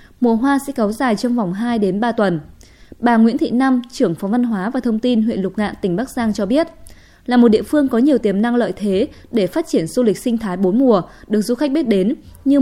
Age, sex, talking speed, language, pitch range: 20-39, female, 260 wpm, Vietnamese, 205-265 Hz